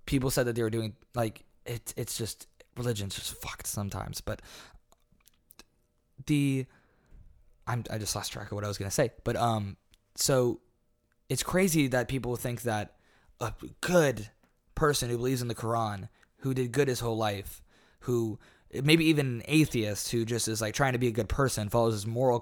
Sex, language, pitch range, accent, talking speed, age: male, English, 105-140 Hz, American, 185 wpm, 20-39